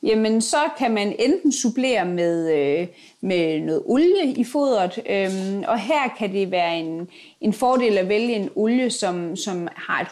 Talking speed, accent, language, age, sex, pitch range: 180 wpm, native, Danish, 30-49, female, 185-245 Hz